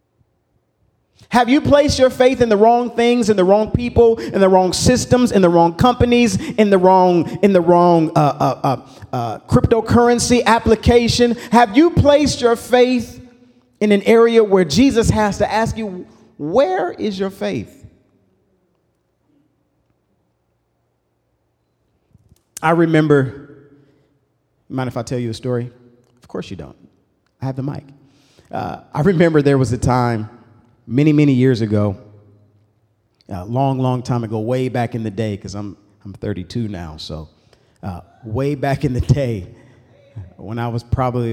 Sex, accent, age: male, American, 40-59